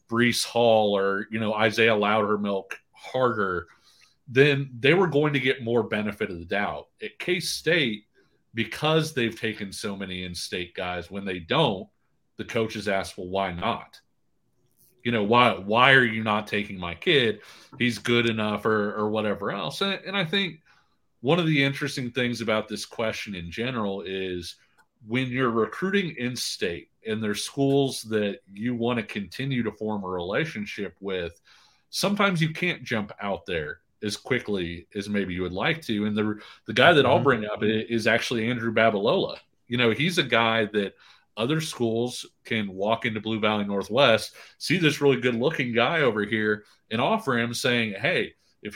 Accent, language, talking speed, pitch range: American, English, 175 wpm, 105-130 Hz